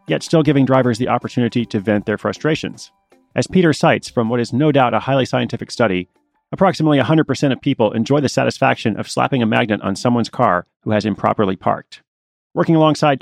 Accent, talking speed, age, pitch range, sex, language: American, 190 wpm, 30-49, 115-150 Hz, male, English